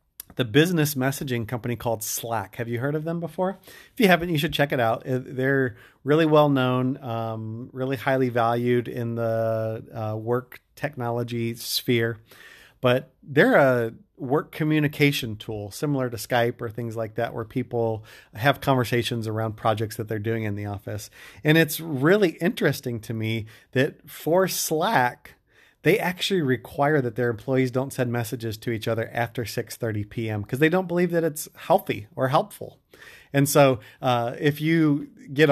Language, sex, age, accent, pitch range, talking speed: English, male, 30-49, American, 115-150 Hz, 165 wpm